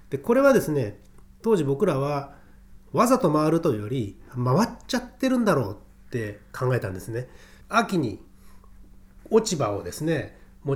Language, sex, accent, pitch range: Japanese, male, native, 125-195 Hz